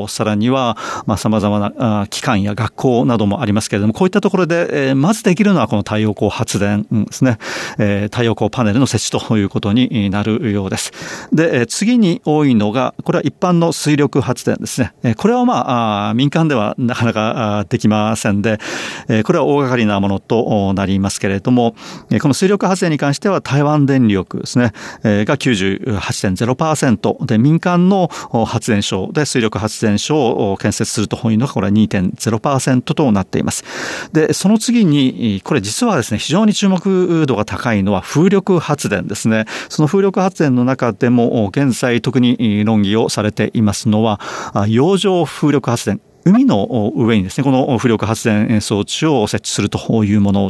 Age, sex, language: 40-59, male, Japanese